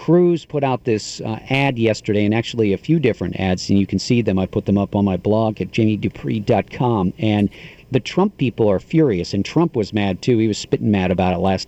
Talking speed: 230 wpm